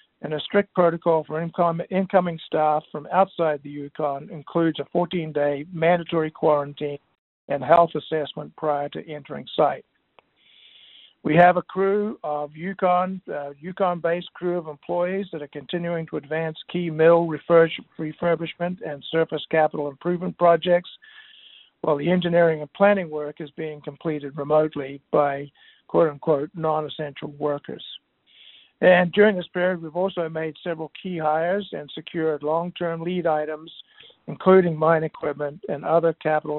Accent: American